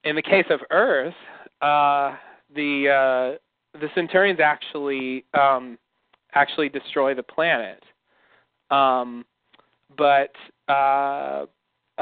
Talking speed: 95 wpm